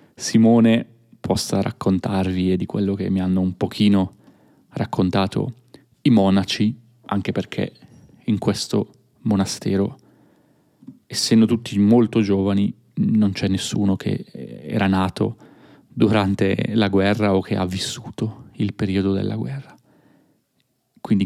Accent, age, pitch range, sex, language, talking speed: native, 30-49, 100-120 Hz, male, Italian, 115 wpm